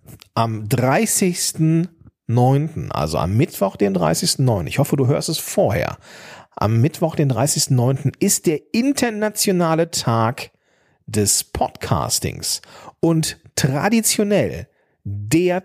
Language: German